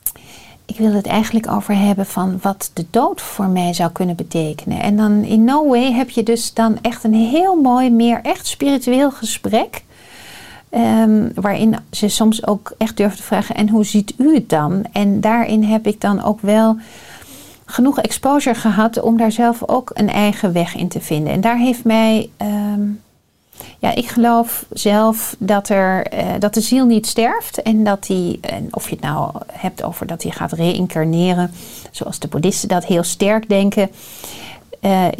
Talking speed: 175 wpm